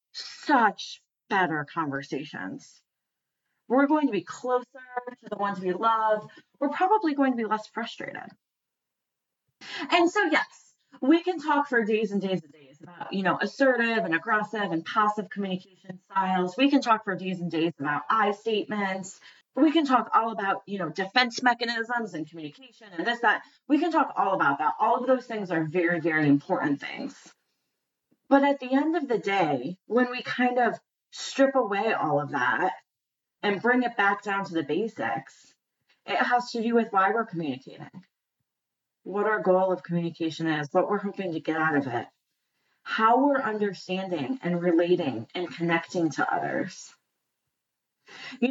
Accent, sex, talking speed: American, female, 170 wpm